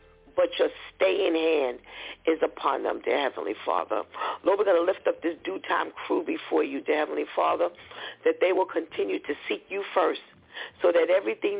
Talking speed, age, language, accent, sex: 185 wpm, 50-69, English, American, female